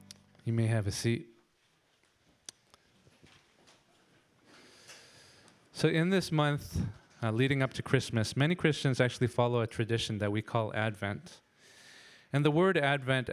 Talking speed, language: 125 wpm, English